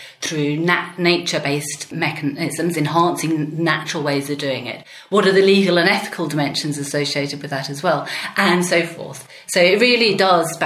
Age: 40-59